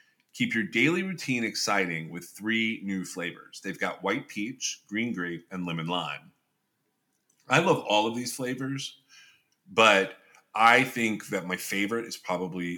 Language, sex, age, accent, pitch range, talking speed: English, male, 30-49, American, 90-125 Hz, 150 wpm